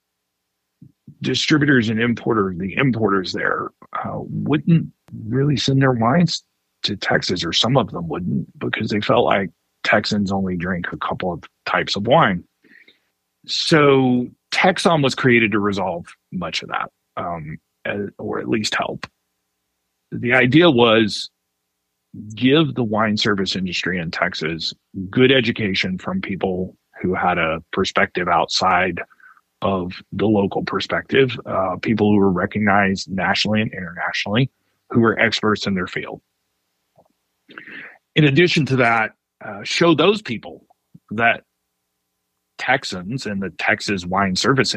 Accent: American